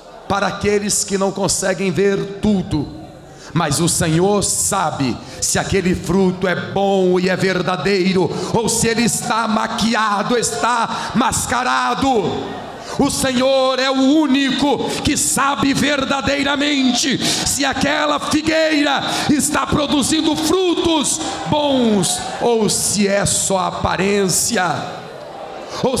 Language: Portuguese